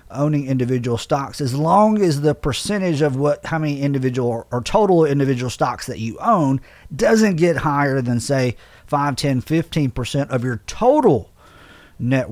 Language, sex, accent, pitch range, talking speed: English, male, American, 120-170 Hz, 160 wpm